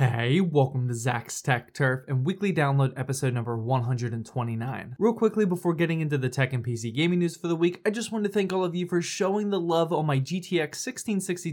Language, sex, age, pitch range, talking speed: English, male, 20-39, 135-185 Hz, 220 wpm